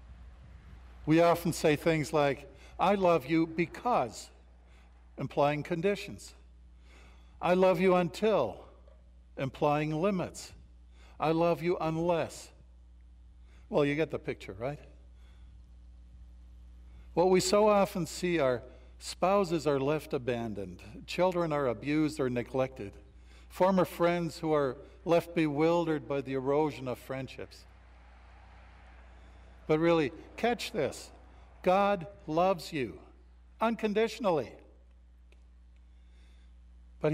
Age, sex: 60-79, male